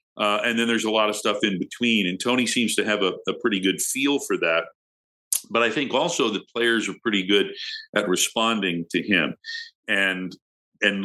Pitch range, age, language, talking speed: 95-115 Hz, 50-69, English, 200 wpm